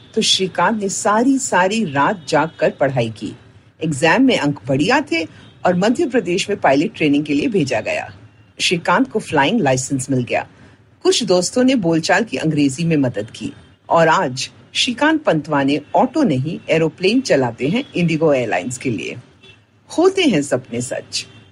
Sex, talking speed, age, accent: female, 75 wpm, 50-69, native